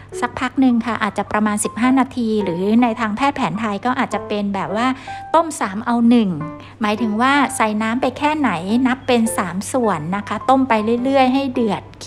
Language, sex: Thai, female